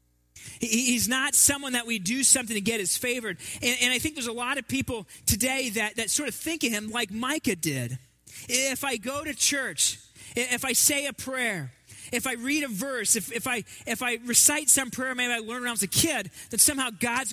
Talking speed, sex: 225 wpm, male